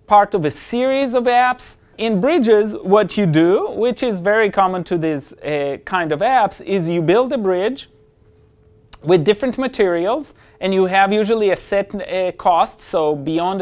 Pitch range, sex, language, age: 130-195 Hz, male, English, 30-49